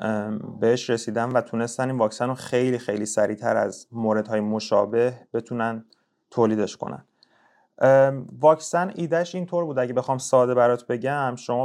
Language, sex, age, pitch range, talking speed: Persian, male, 30-49, 120-140 Hz, 135 wpm